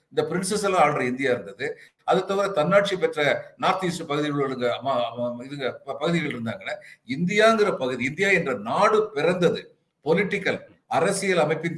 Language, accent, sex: Tamil, native, male